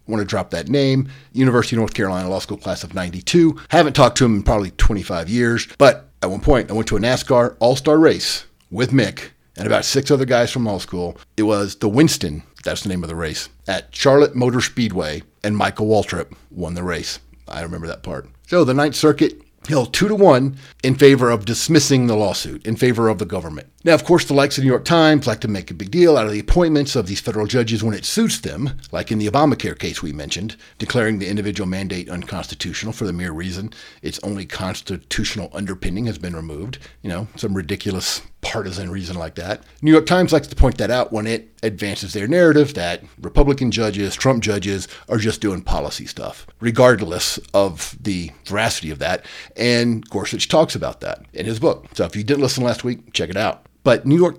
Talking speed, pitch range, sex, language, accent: 215 wpm, 95-130 Hz, male, English, American